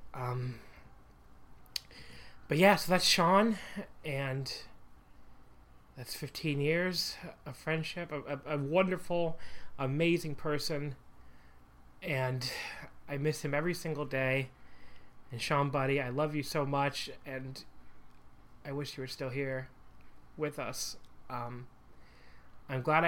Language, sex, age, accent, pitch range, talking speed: English, male, 30-49, American, 120-140 Hz, 115 wpm